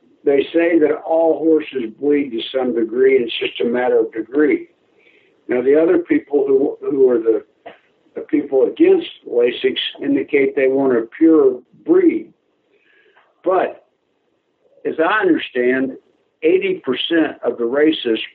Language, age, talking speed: English, 60-79, 135 wpm